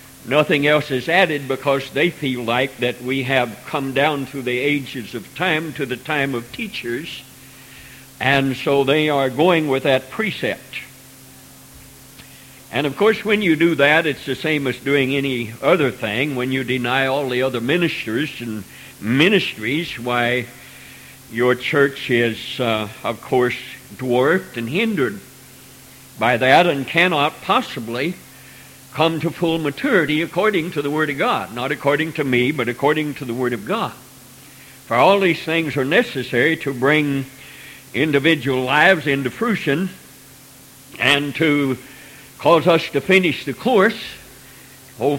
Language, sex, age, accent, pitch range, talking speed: English, male, 60-79, American, 130-155 Hz, 150 wpm